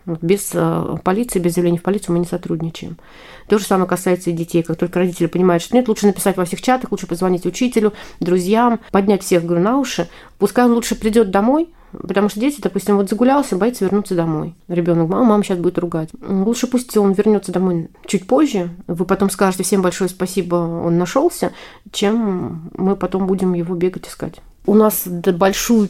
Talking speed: 185 wpm